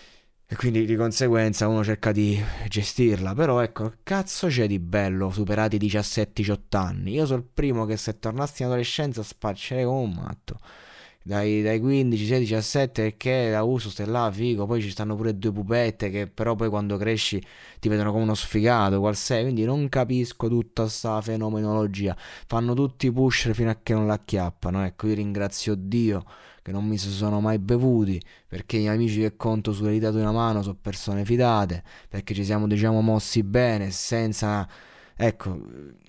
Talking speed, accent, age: 180 wpm, native, 20-39